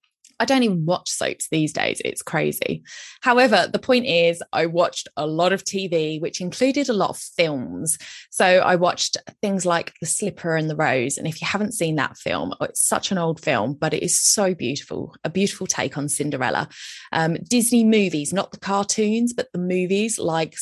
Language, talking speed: English, 195 wpm